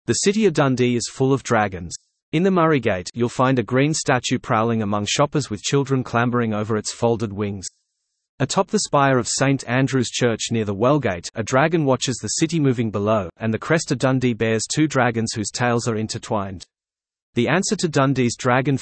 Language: English